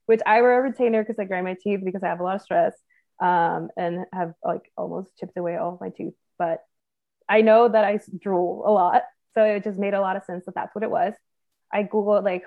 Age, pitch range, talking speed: 20-39, 185-235 Hz, 250 wpm